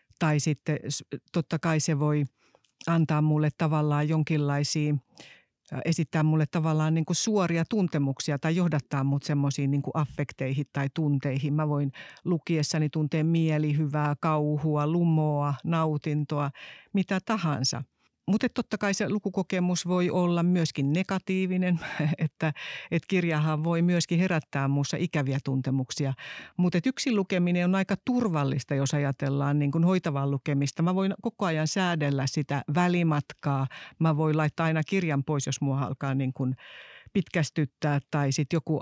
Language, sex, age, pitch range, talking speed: Finnish, female, 60-79, 145-170 Hz, 130 wpm